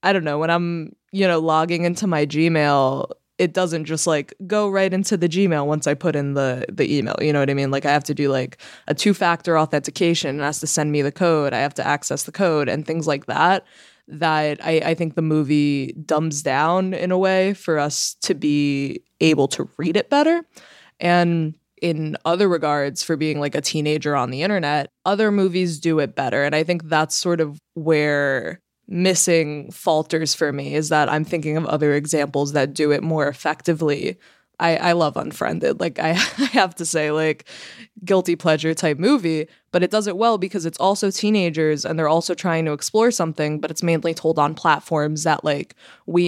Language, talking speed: English, 205 wpm